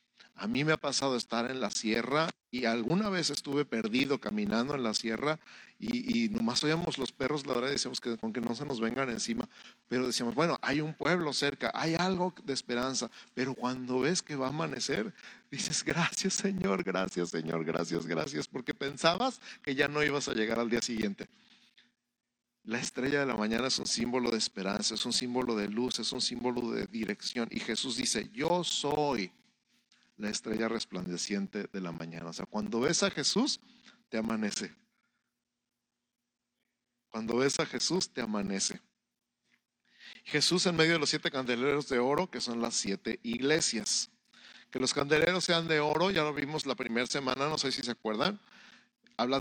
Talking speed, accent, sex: 180 wpm, Mexican, male